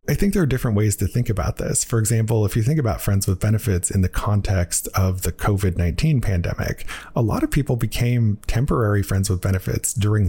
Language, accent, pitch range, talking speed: English, American, 95-120 Hz, 210 wpm